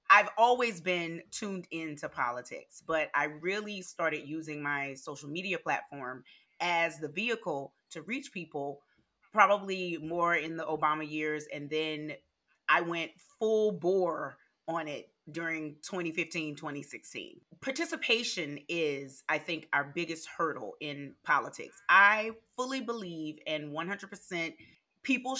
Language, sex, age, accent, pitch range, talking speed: English, female, 30-49, American, 155-195 Hz, 125 wpm